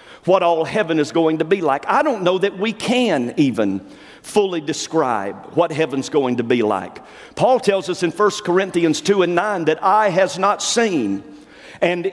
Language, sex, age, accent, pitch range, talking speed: English, male, 50-69, American, 165-220 Hz, 190 wpm